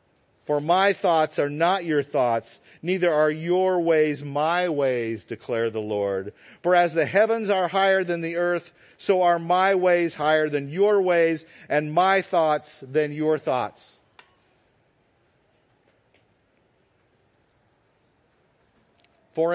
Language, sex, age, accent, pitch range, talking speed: English, male, 50-69, American, 155-230 Hz, 125 wpm